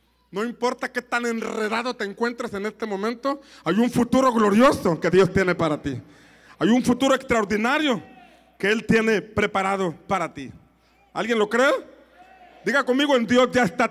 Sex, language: male, Spanish